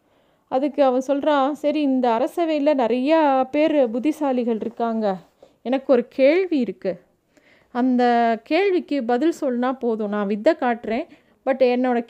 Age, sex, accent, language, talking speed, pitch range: 30-49, female, native, Tamil, 120 wpm, 215-275 Hz